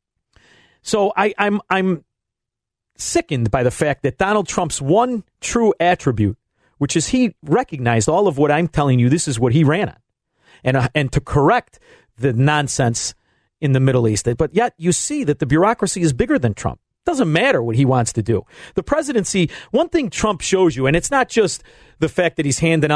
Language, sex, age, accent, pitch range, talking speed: English, male, 40-59, American, 125-205 Hz, 205 wpm